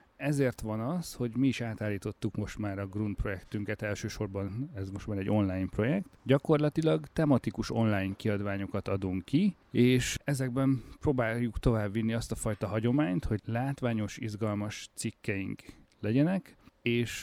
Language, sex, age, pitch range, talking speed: Hungarian, male, 40-59, 100-125 Hz, 135 wpm